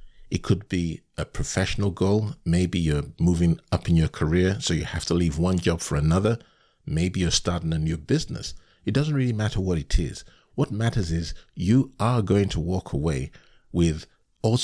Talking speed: 190 wpm